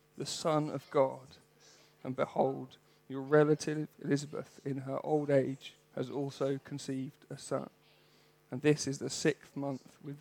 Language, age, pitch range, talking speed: English, 40-59, 135-150 Hz, 145 wpm